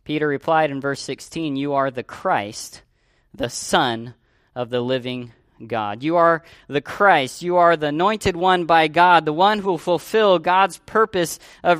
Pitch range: 140-200 Hz